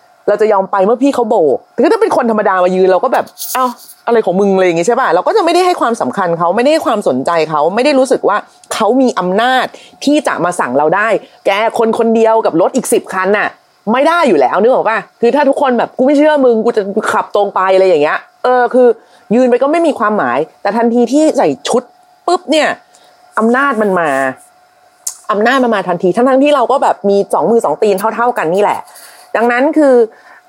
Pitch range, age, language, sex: 210-300 Hz, 30-49, Thai, female